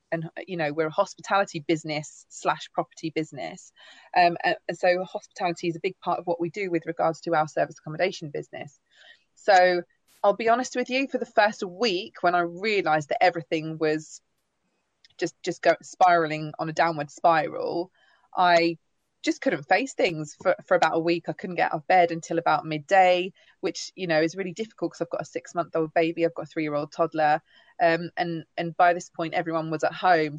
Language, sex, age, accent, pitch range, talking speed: English, female, 20-39, British, 160-185 Hz, 195 wpm